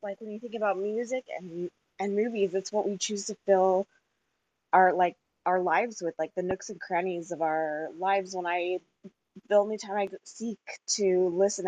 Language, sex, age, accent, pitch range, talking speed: English, female, 20-39, American, 175-200 Hz, 195 wpm